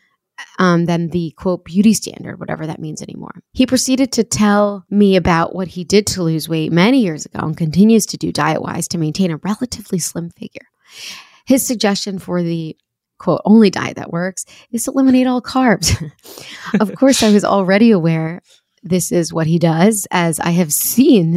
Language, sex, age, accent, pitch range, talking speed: English, female, 20-39, American, 165-215 Hz, 185 wpm